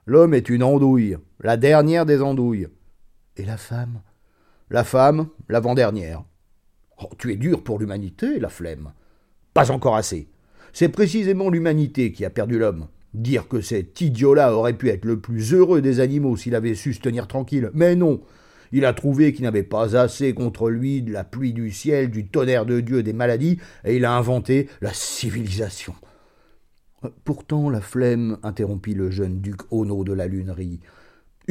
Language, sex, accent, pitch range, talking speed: French, male, French, 105-140 Hz, 175 wpm